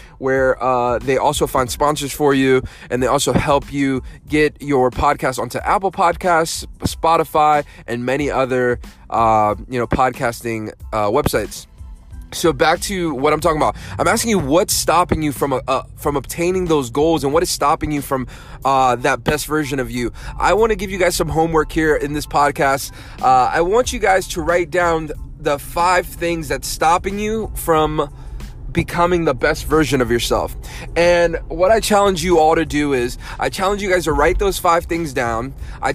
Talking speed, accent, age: 185 wpm, American, 20-39